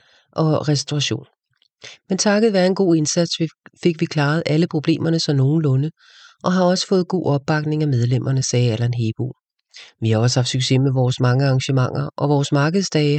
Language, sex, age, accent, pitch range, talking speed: English, female, 40-59, Danish, 135-170 Hz, 170 wpm